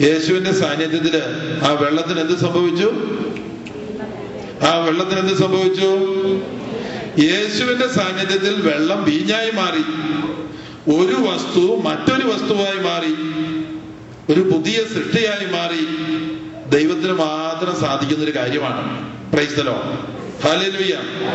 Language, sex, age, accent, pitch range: English, male, 50-69, Indian, 160-200 Hz